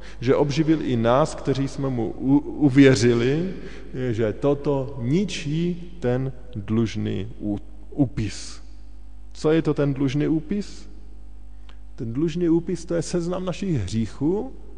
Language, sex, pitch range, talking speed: Slovak, male, 110-165 Hz, 115 wpm